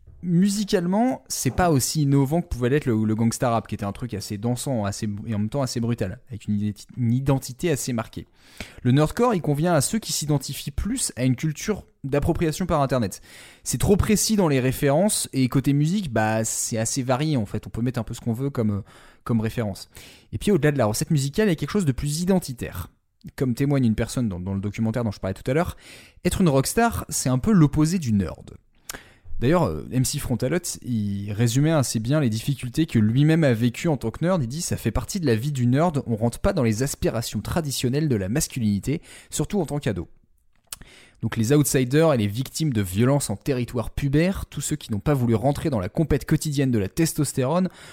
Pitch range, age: 110-155 Hz, 20-39